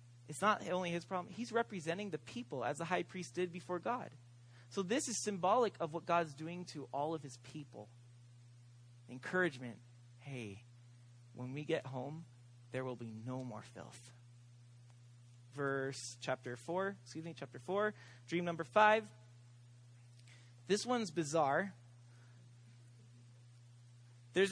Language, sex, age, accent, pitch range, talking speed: English, male, 30-49, American, 120-180 Hz, 135 wpm